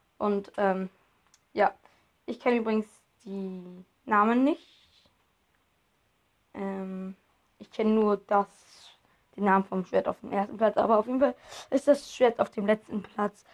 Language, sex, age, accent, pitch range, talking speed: German, female, 20-39, German, 195-240 Hz, 145 wpm